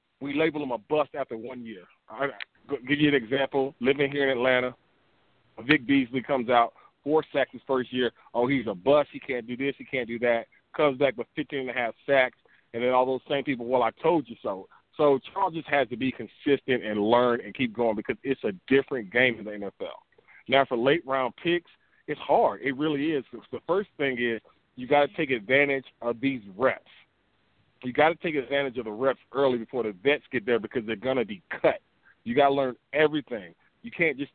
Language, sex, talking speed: English, male, 215 wpm